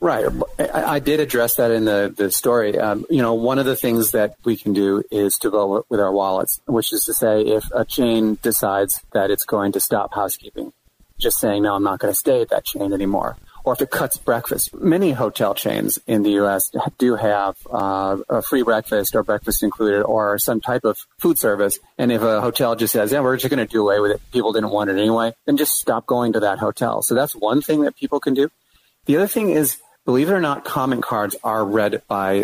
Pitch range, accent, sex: 105-125 Hz, American, male